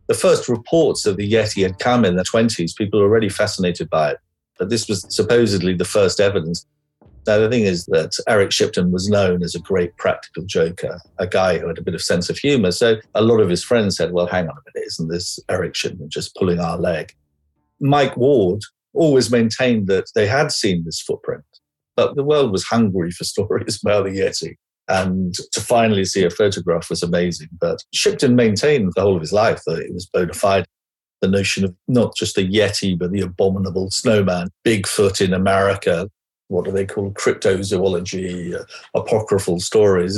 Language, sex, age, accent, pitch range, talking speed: English, male, 50-69, British, 90-105 Hz, 195 wpm